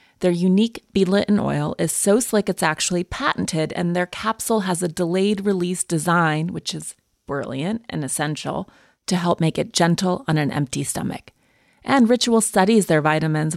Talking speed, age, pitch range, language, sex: 170 wpm, 30-49, 165-205 Hz, English, female